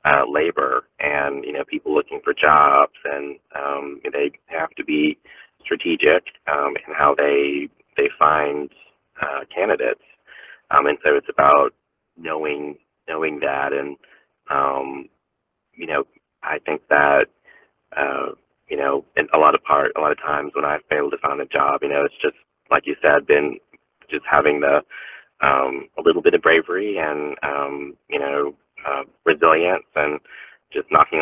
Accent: American